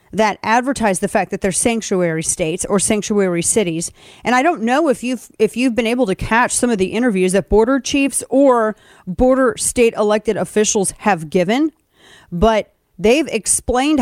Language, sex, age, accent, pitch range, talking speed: English, female, 40-59, American, 200-250 Hz, 170 wpm